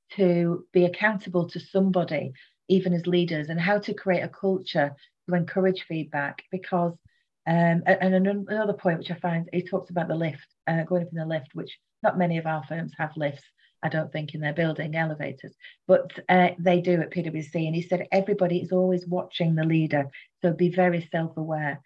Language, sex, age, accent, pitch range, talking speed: English, female, 40-59, British, 170-195 Hz, 195 wpm